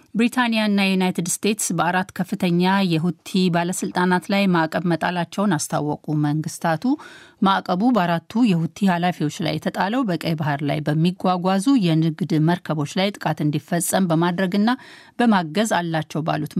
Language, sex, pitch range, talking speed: Amharic, female, 165-200 Hz, 110 wpm